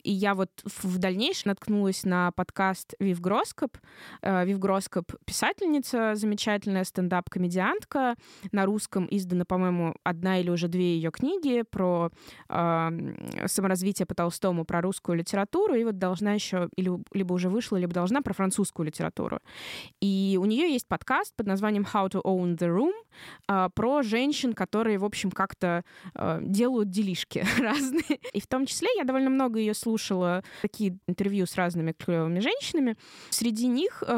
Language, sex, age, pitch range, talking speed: Russian, female, 20-39, 185-230 Hz, 150 wpm